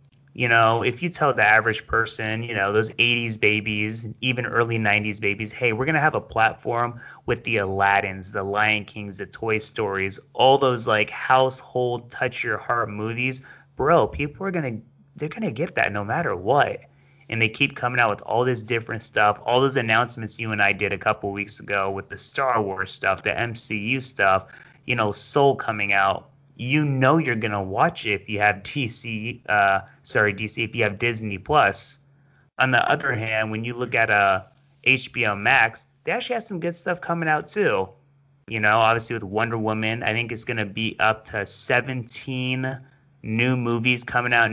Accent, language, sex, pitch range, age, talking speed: American, English, male, 105-130 Hz, 30-49, 195 wpm